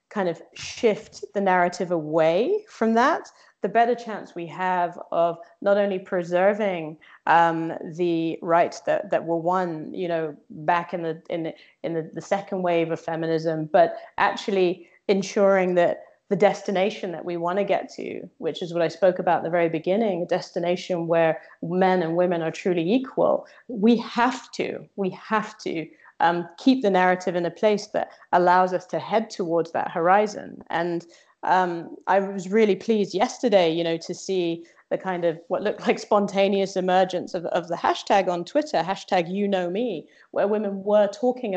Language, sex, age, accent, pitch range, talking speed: English, female, 30-49, British, 170-205 Hz, 180 wpm